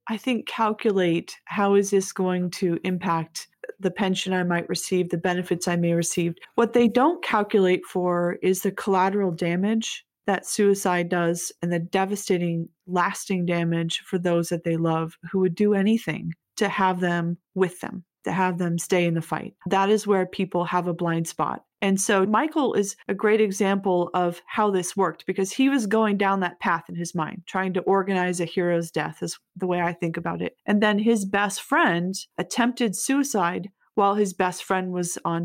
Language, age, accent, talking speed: English, 30-49, American, 190 wpm